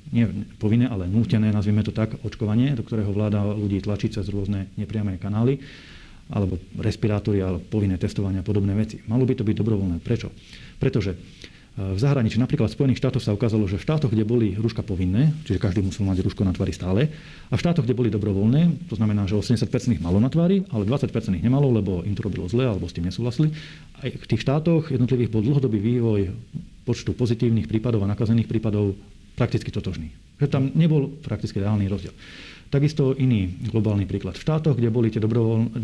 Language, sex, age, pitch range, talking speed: Slovak, male, 40-59, 100-125 Hz, 185 wpm